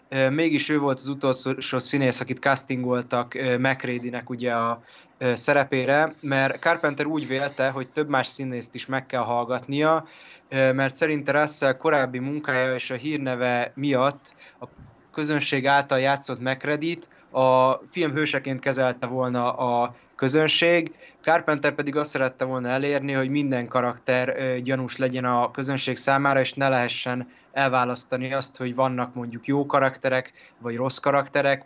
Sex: male